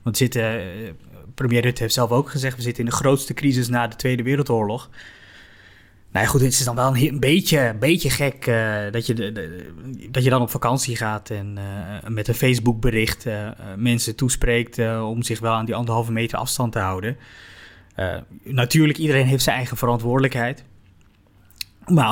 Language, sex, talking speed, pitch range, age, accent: Dutch, male, 180 wpm, 110-140 Hz, 20-39, Dutch